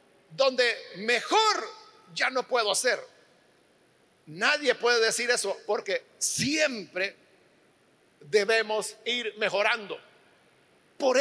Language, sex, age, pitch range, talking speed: Spanish, male, 50-69, 245-320 Hz, 85 wpm